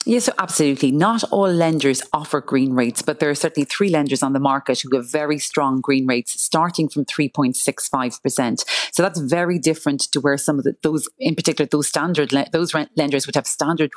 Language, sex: English, female